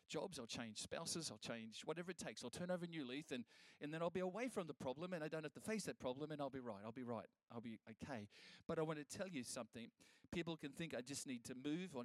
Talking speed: 290 wpm